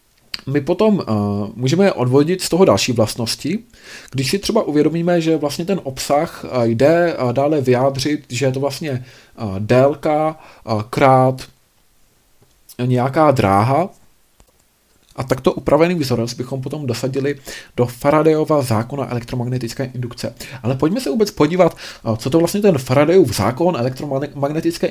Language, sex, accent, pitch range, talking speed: Czech, male, native, 115-150 Hz, 135 wpm